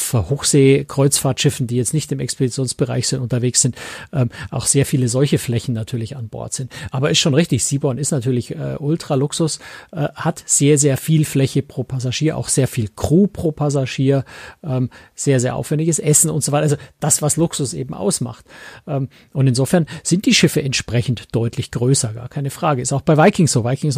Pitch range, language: 125-155 Hz, German